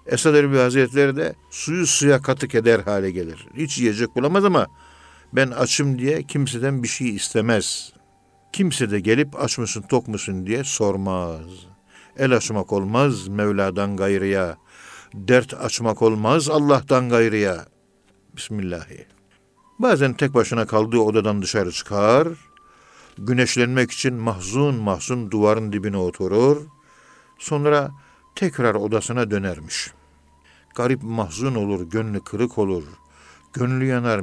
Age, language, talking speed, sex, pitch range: 60-79, Turkish, 120 wpm, male, 100-140 Hz